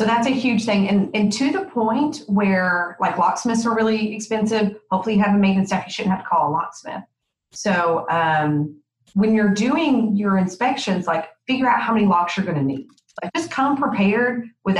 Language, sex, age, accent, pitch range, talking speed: English, female, 30-49, American, 170-215 Hz, 205 wpm